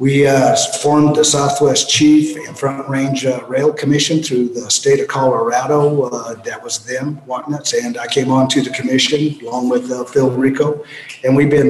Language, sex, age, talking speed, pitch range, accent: English, male, 50-69, 190 wpm, 130-150 Hz, American